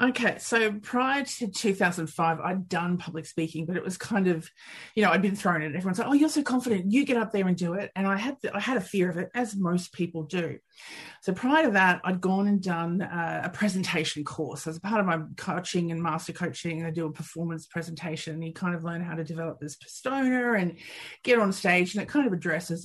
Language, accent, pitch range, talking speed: English, Australian, 165-205 Hz, 240 wpm